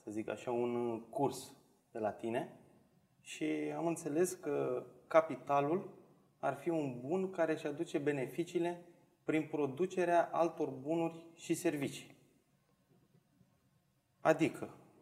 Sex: male